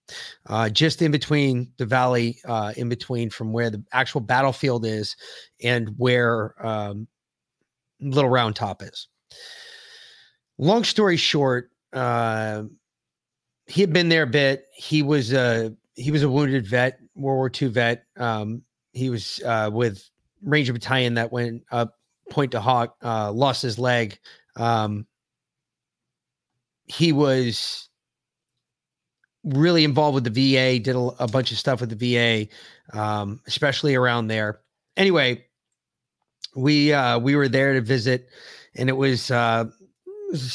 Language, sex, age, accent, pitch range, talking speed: English, male, 30-49, American, 115-140 Hz, 140 wpm